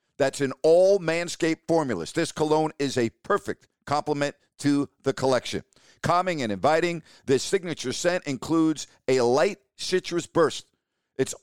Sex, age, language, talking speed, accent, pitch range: male, 50-69, English, 130 wpm, American, 130-175 Hz